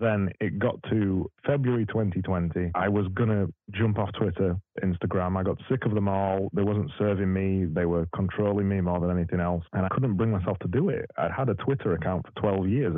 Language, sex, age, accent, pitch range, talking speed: English, male, 30-49, British, 90-110 Hz, 220 wpm